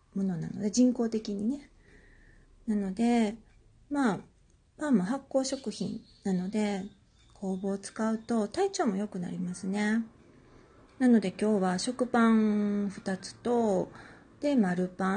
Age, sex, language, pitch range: 40-59, female, Japanese, 190-235 Hz